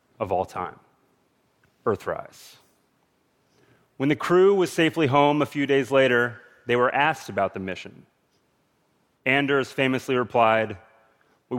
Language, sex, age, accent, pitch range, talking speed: Turkish, male, 30-49, American, 115-150 Hz, 125 wpm